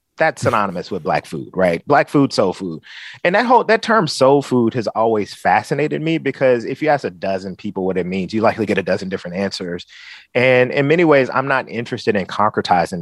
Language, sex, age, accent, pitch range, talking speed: English, male, 30-49, American, 95-130 Hz, 215 wpm